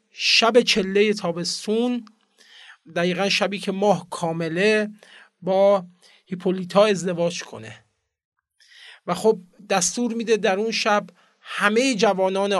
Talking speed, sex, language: 100 wpm, male, Persian